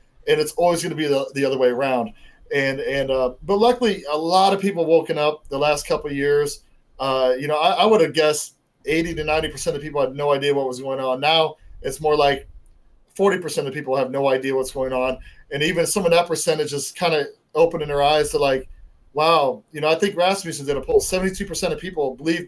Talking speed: 235 wpm